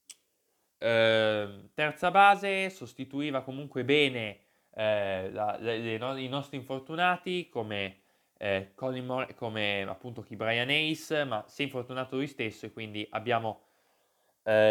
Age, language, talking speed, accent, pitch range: 20-39, Italian, 130 wpm, native, 110-140 Hz